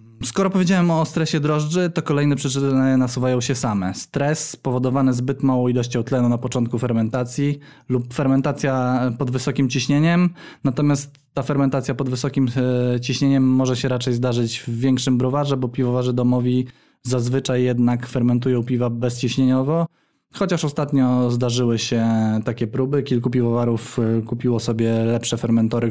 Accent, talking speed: native, 135 wpm